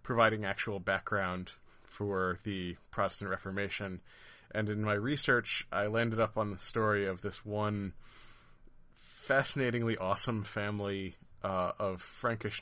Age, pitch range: 30-49, 100-115 Hz